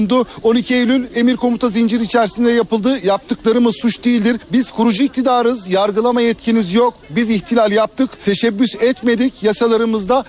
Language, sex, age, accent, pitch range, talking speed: Turkish, male, 50-69, native, 215-245 Hz, 130 wpm